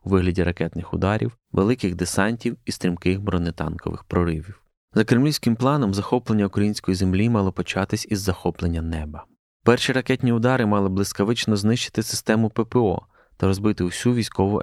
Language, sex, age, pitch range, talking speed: Ukrainian, male, 20-39, 90-110 Hz, 135 wpm